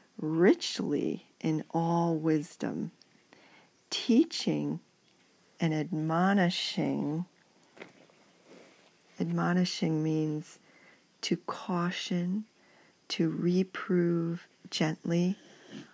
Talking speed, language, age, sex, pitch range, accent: 55 wpm, English, 50-69, female, 160-200 Hz, American